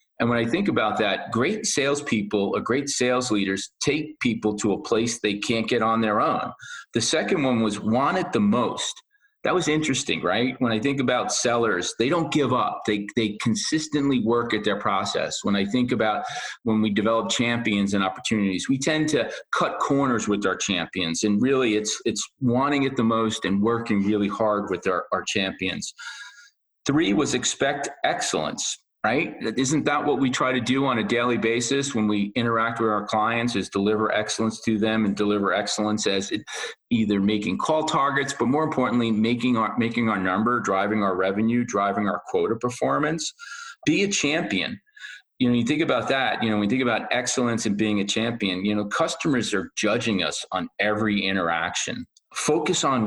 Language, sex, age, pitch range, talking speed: English, male, 40-59, 105-135 Hz, 190 wpm